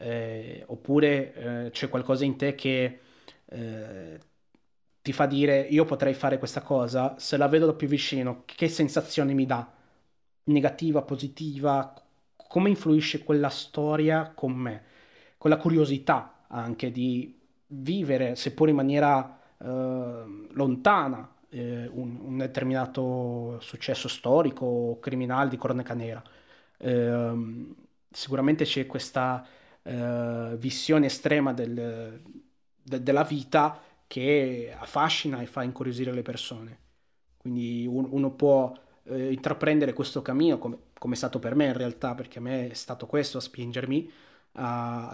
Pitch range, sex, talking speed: 125-145 Hz, male, 130 wpm